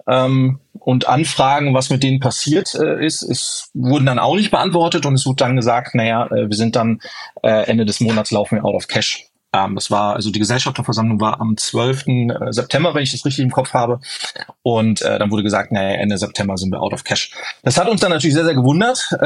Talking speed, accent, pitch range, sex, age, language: 205 wpm, German, 120-145 Hz, male, 30-49, German